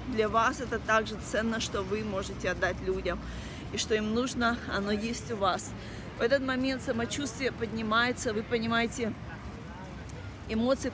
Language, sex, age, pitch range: Russian, female, 30-49, 195-245 Hz